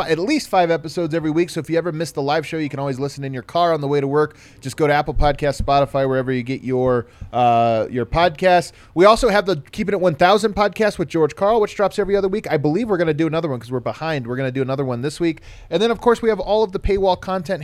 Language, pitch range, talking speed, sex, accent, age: English, 135-185 Hz, 290 wpm, male, American, 30-49